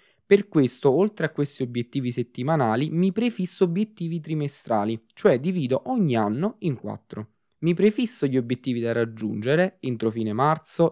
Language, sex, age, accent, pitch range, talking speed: Italian, male, 20-39, native, 115-165 Hz, 145 wpm